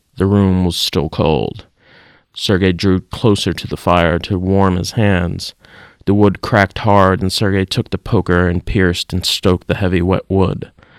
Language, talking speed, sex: English, 175 wpm, male